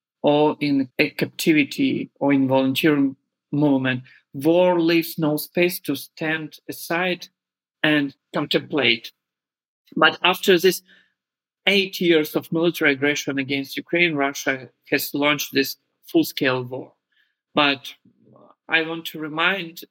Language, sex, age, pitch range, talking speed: German, male, 50-69, 140-170 Hz, 115 wpm